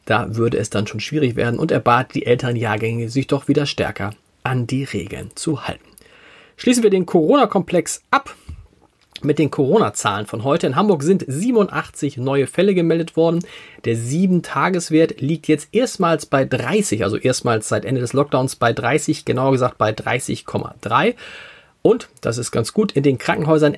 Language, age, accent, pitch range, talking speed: German, 40-59, German, 125-165 Hz, 165 wpm